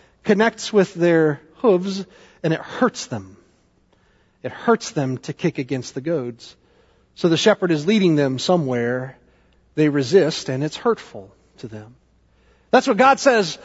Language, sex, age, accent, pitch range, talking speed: English, male, 40-59, American, 150-230 Hz, 150 wpm